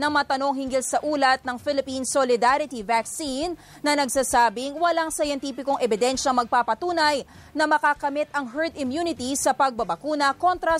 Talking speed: 130 wpm